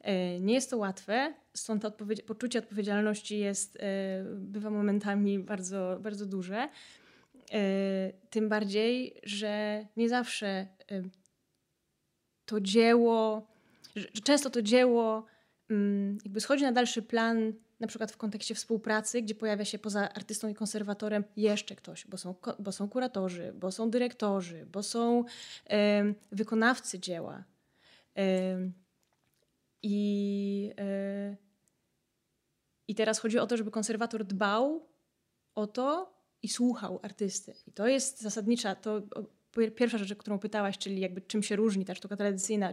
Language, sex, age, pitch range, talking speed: Polish, female, 20-39, 200-225 Hz, 125 wpm